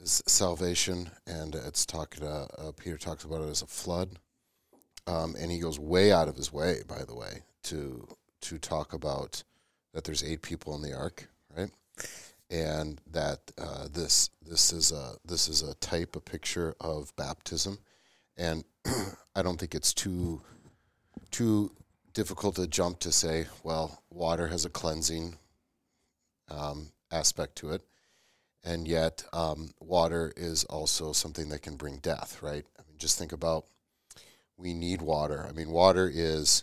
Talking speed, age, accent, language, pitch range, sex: 160 wpm, 40-59, American, English, 75-90 Hz, male